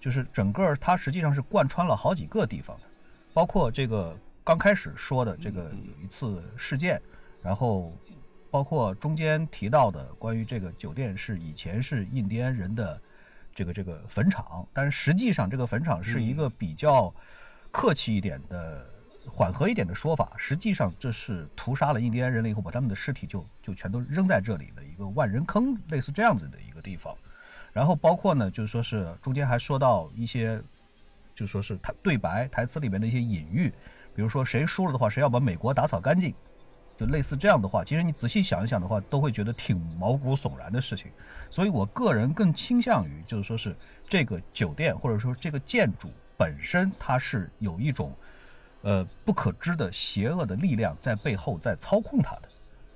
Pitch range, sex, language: 105-155 Hz, male, Chinese